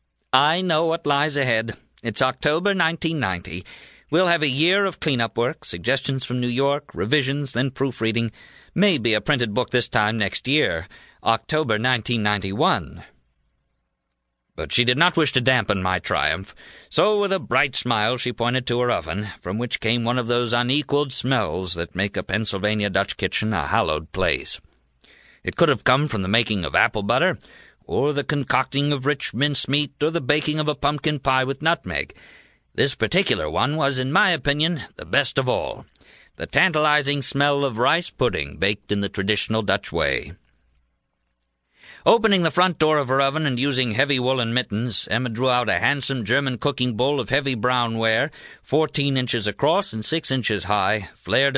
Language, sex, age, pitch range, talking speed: English, male, 50-69, 105-145 Hz, 170 wpm